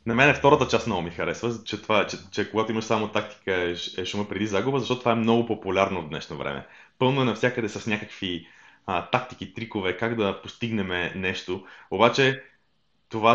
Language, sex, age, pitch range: Bulgarian, male, 20-39, 95-120 Hz